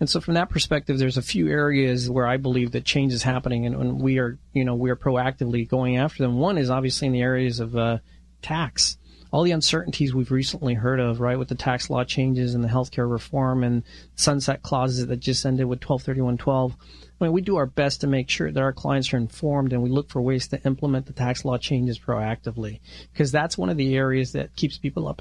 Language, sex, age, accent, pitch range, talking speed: English, male, 40-59, American, 120-140 Hz, 235 wpm